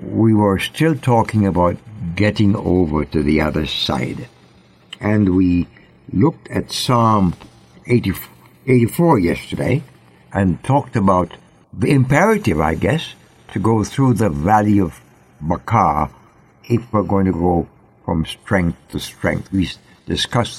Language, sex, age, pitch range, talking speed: English, male, 60-79, 85-125 Hz, 125 wpm